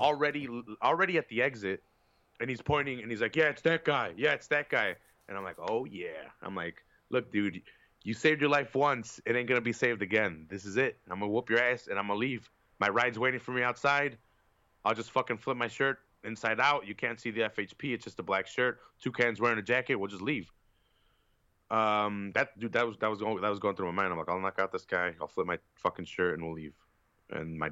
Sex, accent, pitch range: male, American, 100-140 Hz